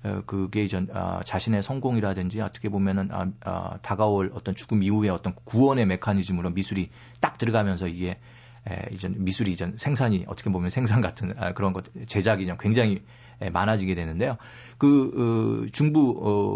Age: 40-59